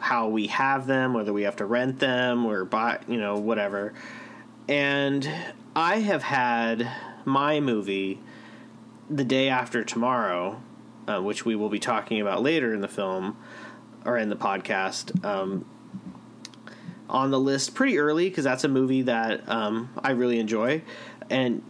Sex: male